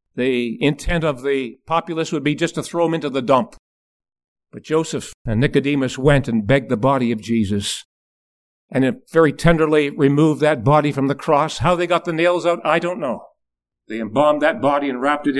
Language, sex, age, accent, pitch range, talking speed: English, male, 50-69, American, 110-160 Hz, 195 wpm